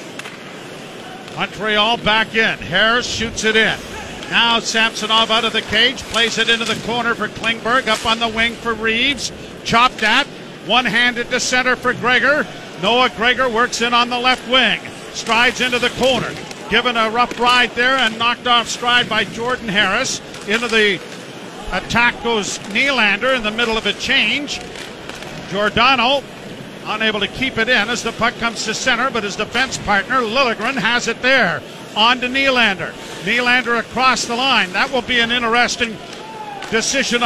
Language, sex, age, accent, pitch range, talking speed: English, male, 50-69, American, 220-255 Hz, 165 wpm